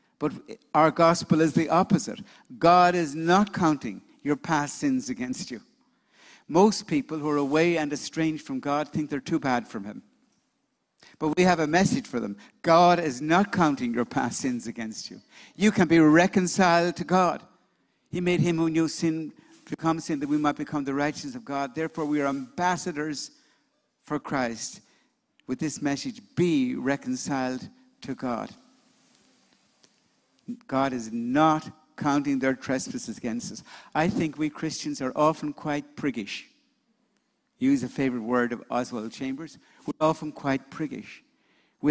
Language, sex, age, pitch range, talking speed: English, male, 60-79, 145-175 Hz, 155 wpm